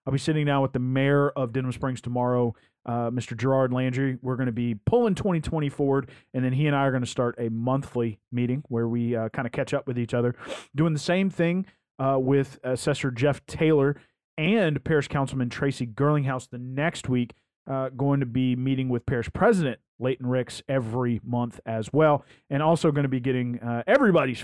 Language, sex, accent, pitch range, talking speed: English, male, American, 120-145 Hz, 200 wpm